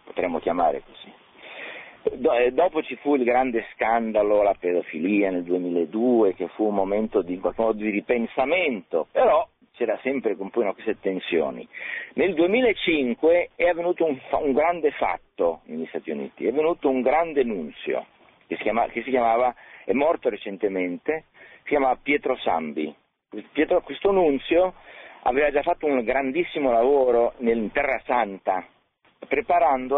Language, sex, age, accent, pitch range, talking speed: Italian, male, 50-69, native, 115-170 Hz, 140 wpm